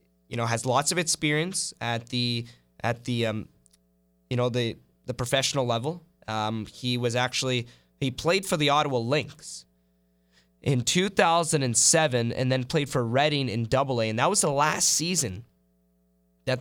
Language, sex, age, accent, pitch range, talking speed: English, male, 20-39, American, 110-140 Hz, 155 wpm